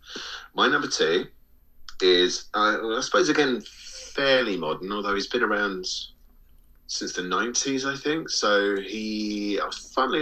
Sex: male